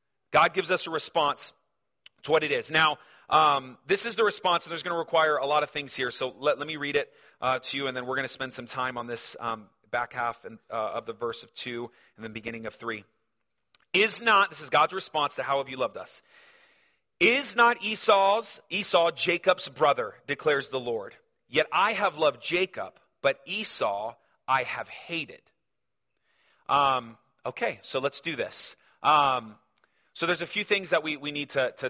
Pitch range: 130-185 Hz